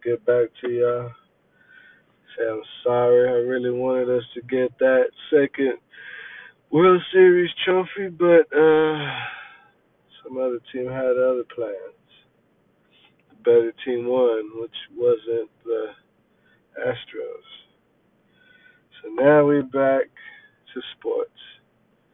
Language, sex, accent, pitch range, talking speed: English, male, American, 120-145 Hz, 110 wpm